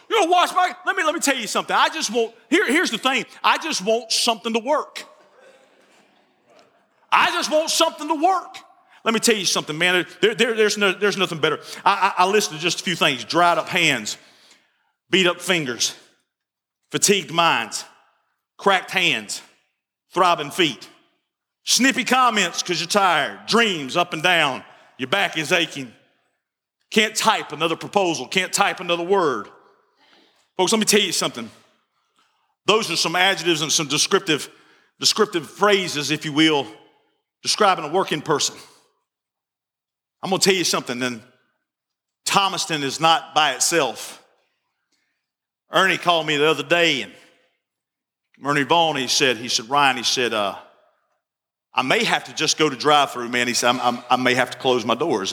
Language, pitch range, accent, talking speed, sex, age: English, 155-230 Hz, American, 170 wpm, male, 40-59